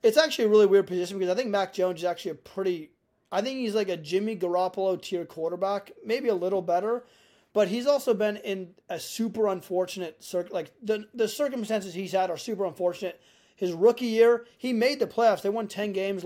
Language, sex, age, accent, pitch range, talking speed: English, male, 30-49, American, 185-225 Hz, 205 wpm